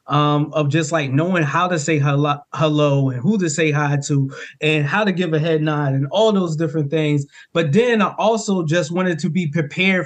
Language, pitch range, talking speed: English, 145-175 Hz, 220 wpm